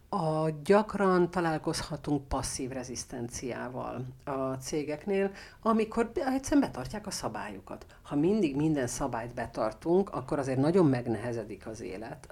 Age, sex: 50-69, female